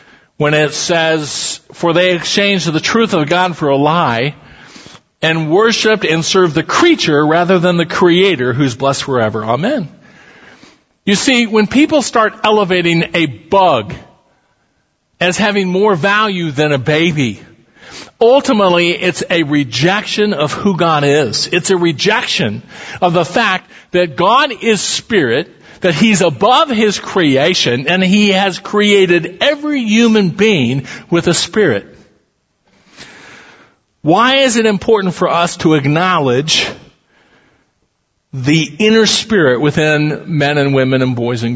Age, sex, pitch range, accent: 50-69, male, 145-205 Hz, American